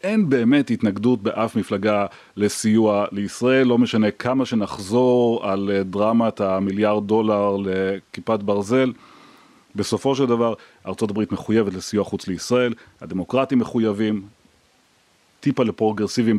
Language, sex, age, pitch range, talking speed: Hebrew, male, 30-49, 100-120 Hz, 105 wpm